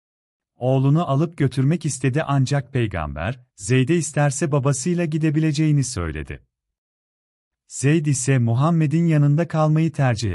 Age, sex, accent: 40-59, male, native